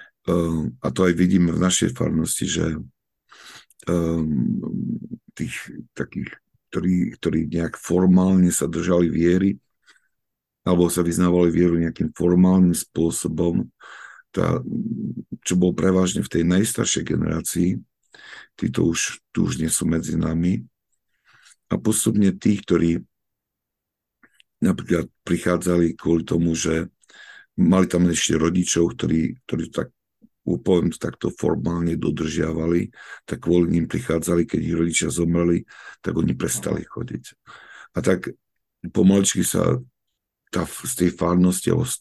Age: 50-69